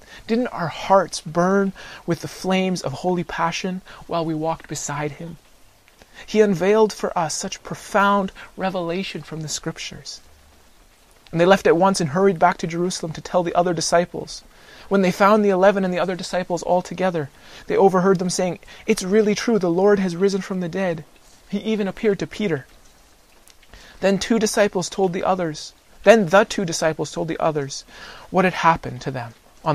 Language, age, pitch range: English, 30-49, 140-190 Hz